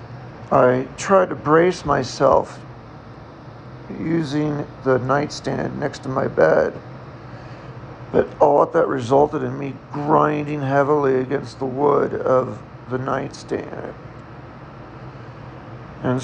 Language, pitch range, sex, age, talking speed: English, 125-145 Hz, male, 50-69, 105 wpm